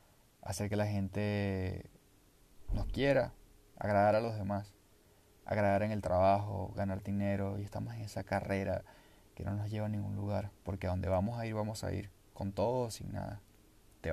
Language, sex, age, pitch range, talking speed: Spanish, male, 20-39, 95-110 Hz, 185 wpm